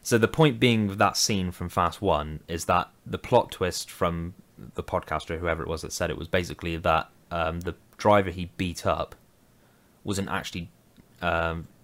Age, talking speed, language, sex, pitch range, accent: 10-29, 180 wpm, English, male, 80-90 Hz, British